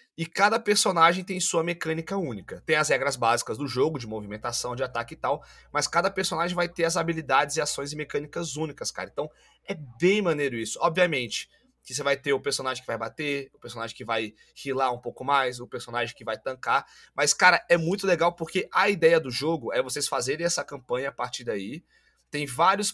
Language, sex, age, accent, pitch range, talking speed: Portuguese, male, 20-39, Brazilian, 130-170 Hz, 210 wpm